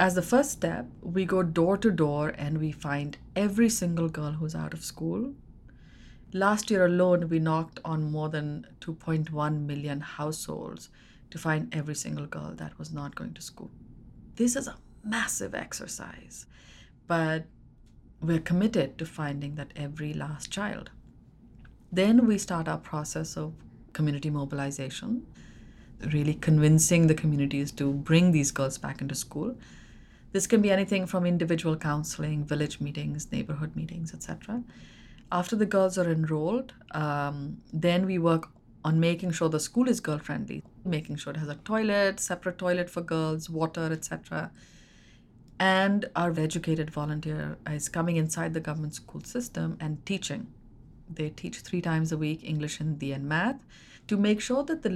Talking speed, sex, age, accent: 155 wpm, female, 30-49, Indian